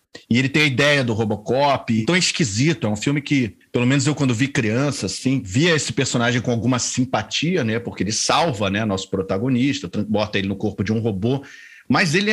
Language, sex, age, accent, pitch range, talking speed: Portuguese, male, 40-59, Brazilian, 115-140 Hz, 210 wpm